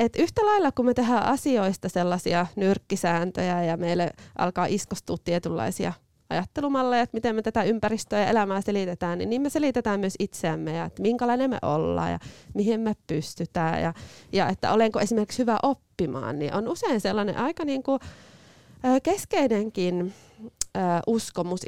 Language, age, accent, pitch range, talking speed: Finnish, 30-49, native, 175-245 Hz, 145 wpm